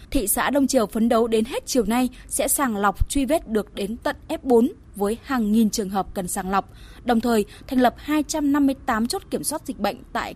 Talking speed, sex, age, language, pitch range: 220 wpm, female, 20-39, Vietnamese, 225-290 Hz